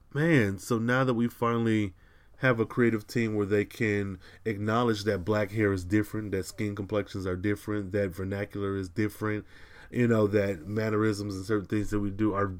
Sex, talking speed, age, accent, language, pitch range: male, 185 wpm, 20-39, American, English, 100-120 Hz